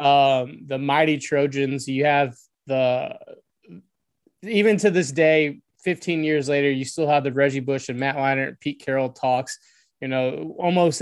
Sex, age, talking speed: male, 20-39, 160 wpm